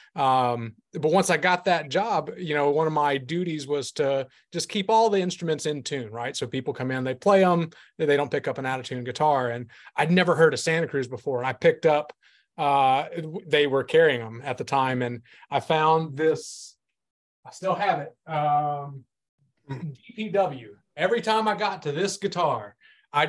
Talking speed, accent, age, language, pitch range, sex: 195 wpm, American, 30-49, English, 135-175 Hz, male